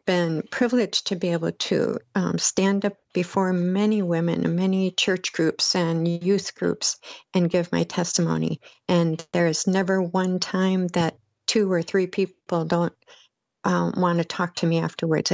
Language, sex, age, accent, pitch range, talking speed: English, female, 60-79, American, 170-190 Hz, 155 wpm